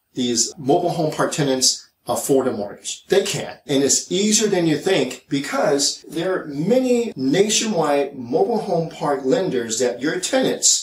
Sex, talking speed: male, 155 wpm